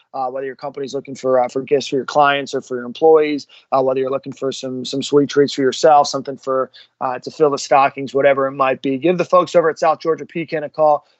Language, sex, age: English, male, 30-49